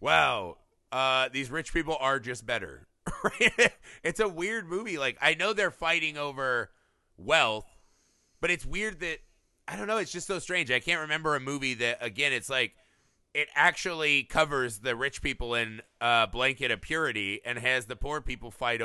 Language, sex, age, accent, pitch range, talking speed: English, male, 30-49, American, 125-165 Hz, 180 wpm